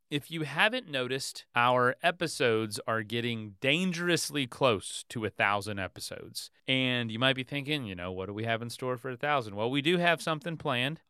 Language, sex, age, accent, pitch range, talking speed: English, male, 30-49, American, 110-140 Hz, 195 wpm